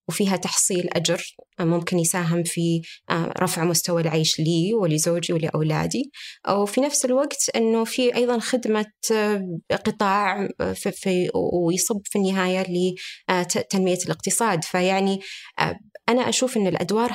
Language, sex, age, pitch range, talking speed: Arabic, female, 20-39, 165-205 Hz, 120 wpm